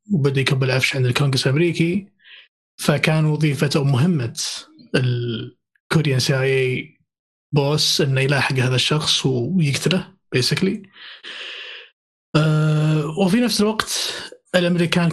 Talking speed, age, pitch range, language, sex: 90 wpm, 20-39, 130-170 Hz, Arabic, male